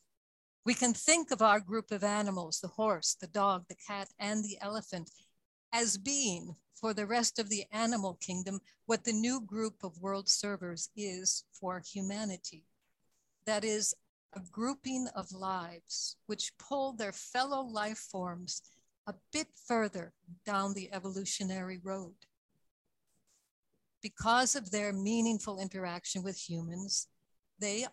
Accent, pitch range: American, 185-220 Hz